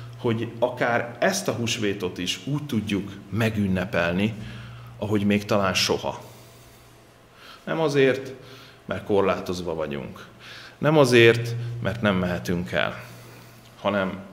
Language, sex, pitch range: Hungarian, male, 95-120 Hz